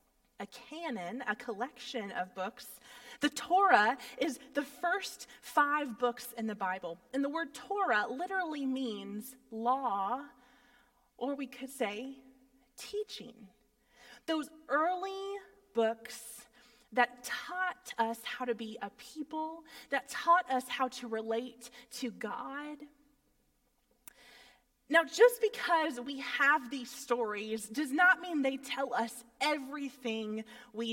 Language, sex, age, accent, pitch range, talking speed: English, female, 20-39, American, 240-285 Hz, 120 wpm